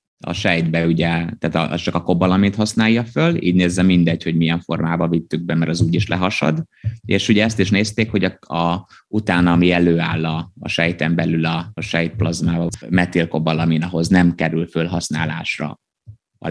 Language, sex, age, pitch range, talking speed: Hungarian, male, 30-49, 85-110 Hz, 175 wpm